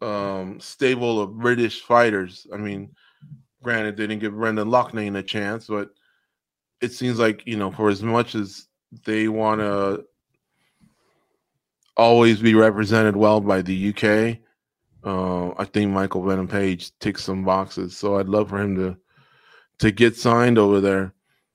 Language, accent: English, American